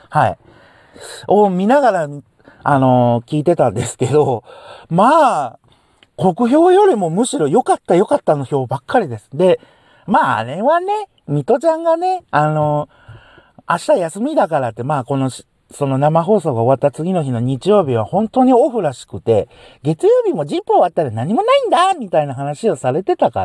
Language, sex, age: Japanese, male, 50-69